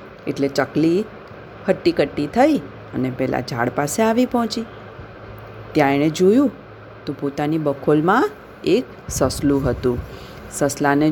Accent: native